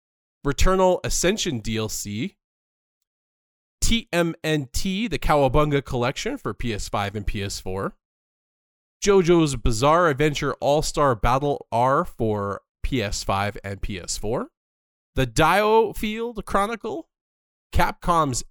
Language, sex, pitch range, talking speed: English, male, 105-150 Hz, 80 wpm